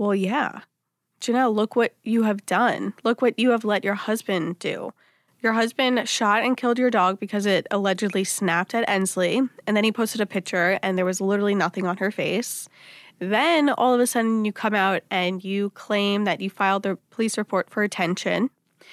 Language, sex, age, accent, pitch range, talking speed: English, female, 20-39, American, 185-240 Hz, 195 wpm